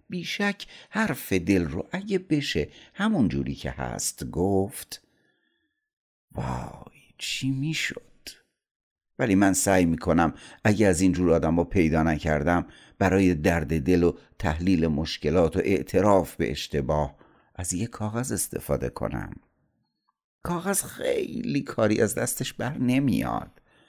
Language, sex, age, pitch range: Persian, male, 60-79, 80-110 Hz